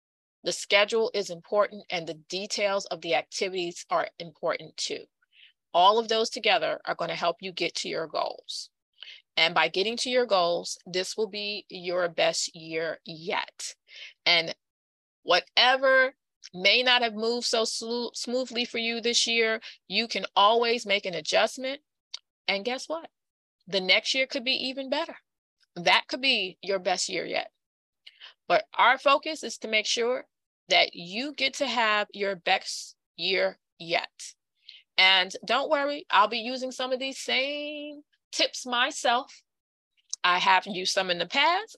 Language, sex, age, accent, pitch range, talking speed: English, female, 30-49, American, 195-260 Hz, 155 wpm